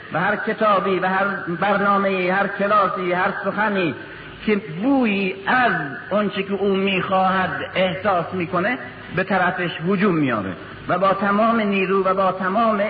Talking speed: 155 wpm